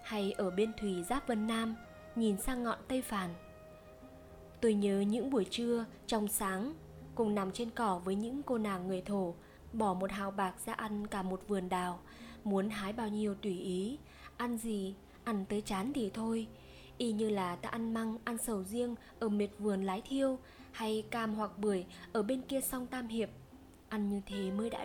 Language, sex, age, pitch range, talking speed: Vietnamese, female, 20-39, 195-235 Hz, 195 wpm